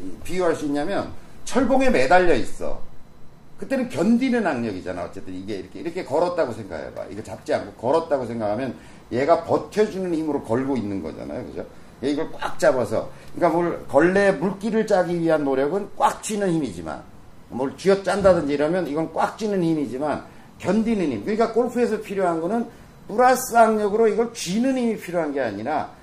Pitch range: 155-230 Hz